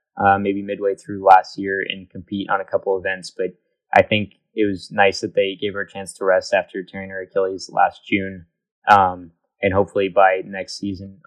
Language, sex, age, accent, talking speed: English, male, 20-39, American, 200 wpm